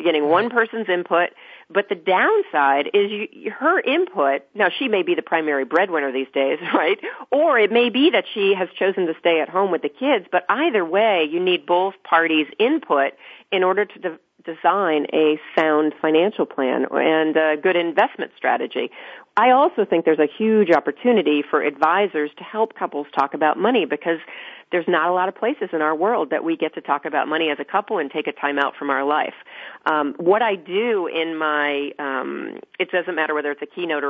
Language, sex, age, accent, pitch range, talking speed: English, female, 40-59, American, 150-210 Hz, 200 wpm